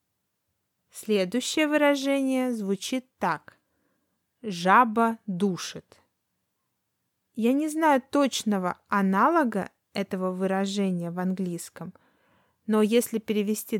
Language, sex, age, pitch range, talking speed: Russian, female, 20-39, 190-255 Hz, 80 wpm